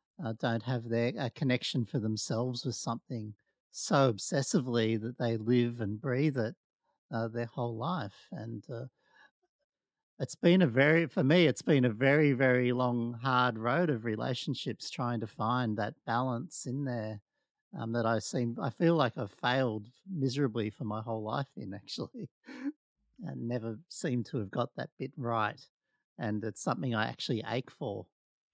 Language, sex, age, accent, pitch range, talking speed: English, male, 50-69, Australian, 115-140 Hz, 170 wpm